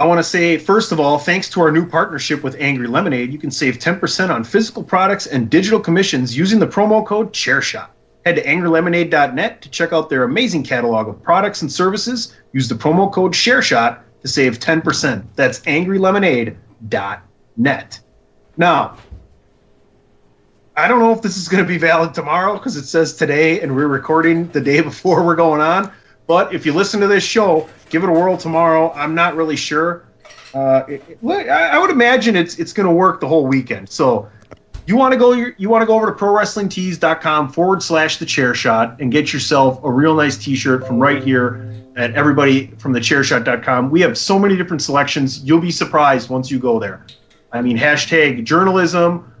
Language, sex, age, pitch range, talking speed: English, male, 30-49, 135-185 Hz, 185 wpm